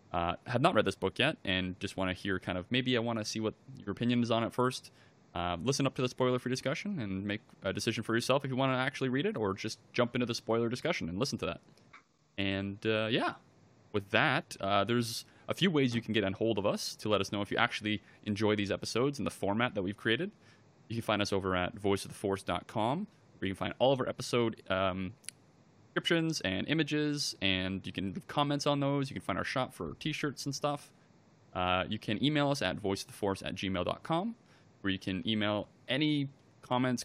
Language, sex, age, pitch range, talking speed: English, male, 20-39, 100-130 Hz, 230 wpm